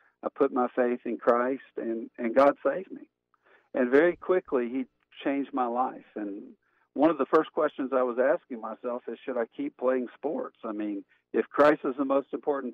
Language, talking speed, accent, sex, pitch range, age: English, 200 wpm, American, male, 115-135 Hz, 50-69